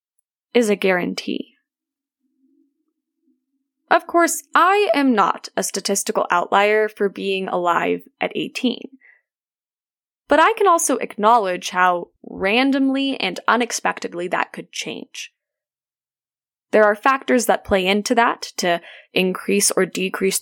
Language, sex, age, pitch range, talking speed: English, female, 10-29, 195-285 Hz, 115 wpm